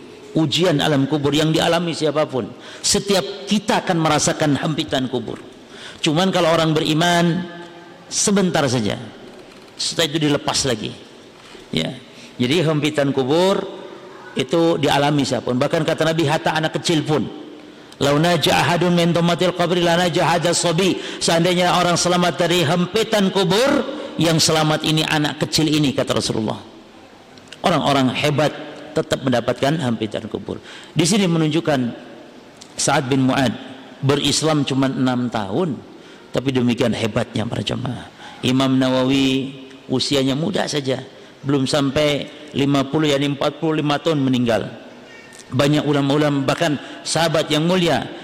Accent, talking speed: native, 110 wpm